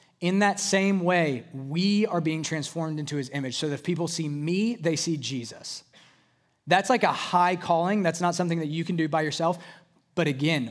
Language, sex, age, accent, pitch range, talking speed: English, male, 20-39, American, 140-175 Hz, 200 wpm